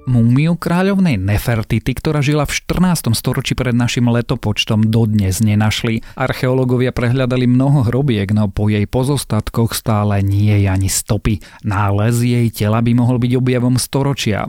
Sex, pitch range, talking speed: male, 110-130 Hz, 145 wpm